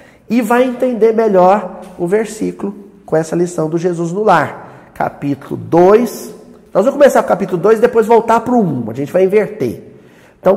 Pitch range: 175-235 Hz